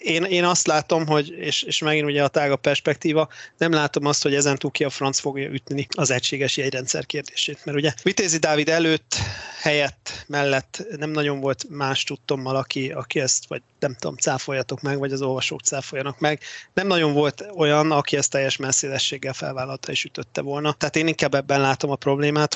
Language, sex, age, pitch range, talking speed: Hungarian, male, 30-49, 135-150 Hz, 190 wpm